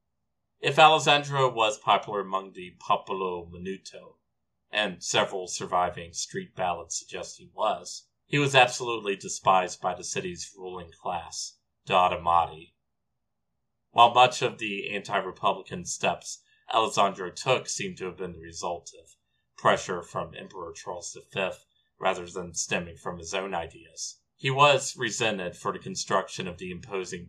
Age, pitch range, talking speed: 30-49, 85-115 Hz, 135 wpm